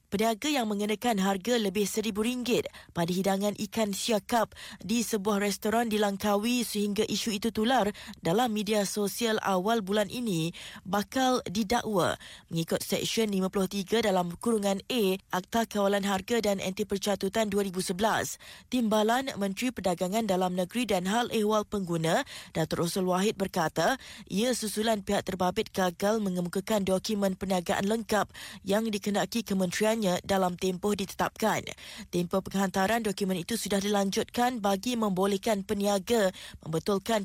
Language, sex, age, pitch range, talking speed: Malay, female, 20-39, 195-225 Hz, 125 wpm